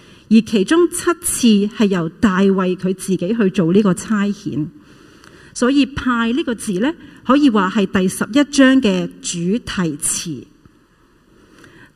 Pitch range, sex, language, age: 195-255 Hz, female, Chinese, 40-59